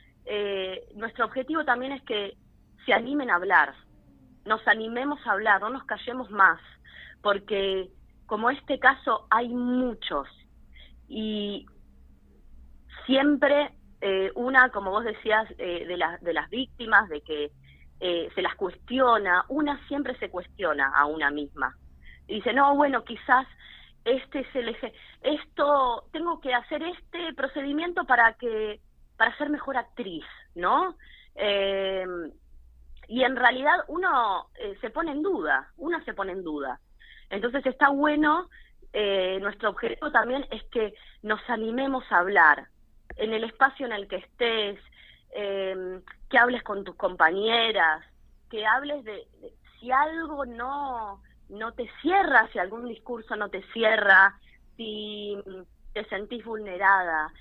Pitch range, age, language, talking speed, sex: 195-265 Hz, 20-39, Spanish, 135 wpm, female